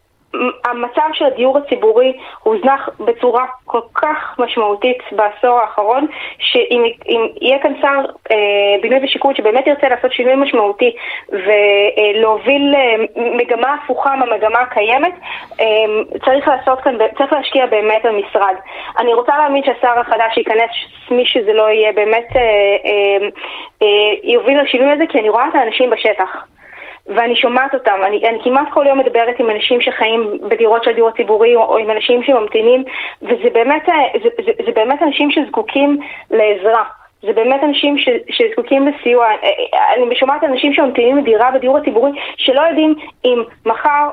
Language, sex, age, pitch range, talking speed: Hebrew, female, 20-39, 225-285 Hz, 145 wpm